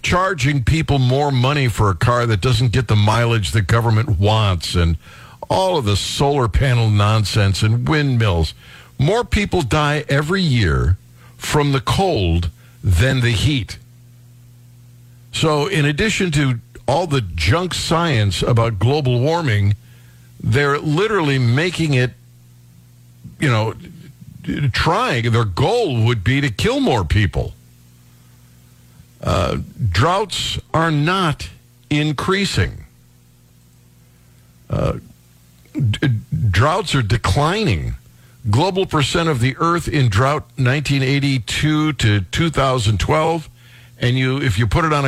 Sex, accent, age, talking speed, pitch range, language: male, American, 60-79, 115 wpm, 110-140 Hz, English